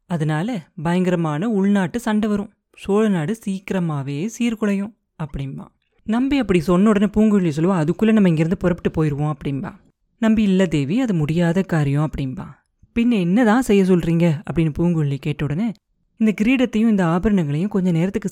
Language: Tamil